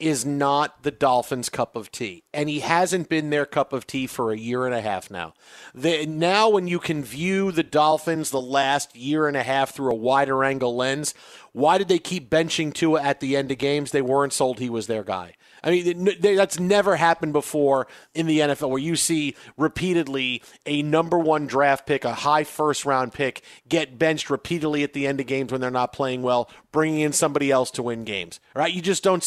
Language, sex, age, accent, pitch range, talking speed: English, male, 40-59, American, 140-170 Hz, 220 wpm